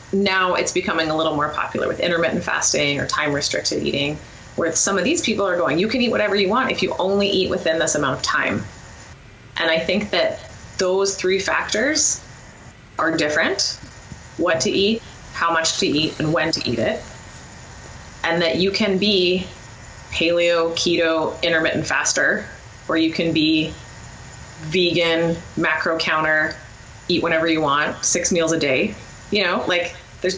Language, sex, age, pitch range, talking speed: English, female, 20-39, 140-185 Hz, 170 wpm